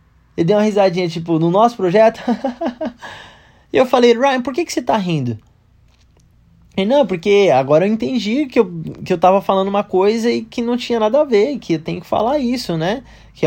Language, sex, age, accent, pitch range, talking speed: Portuguese, male, 20-39, Brazilian, 140-210 Hz, 210 wpm